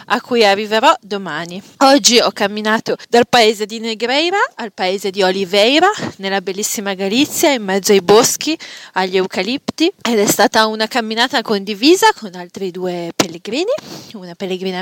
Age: 30-49